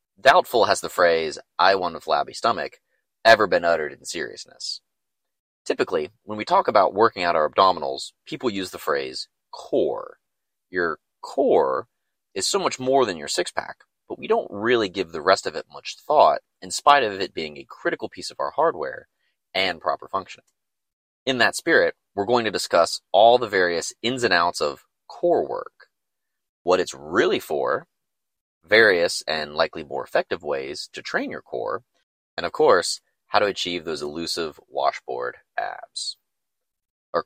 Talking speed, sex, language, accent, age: 165 wpm, male, English, American, 30-49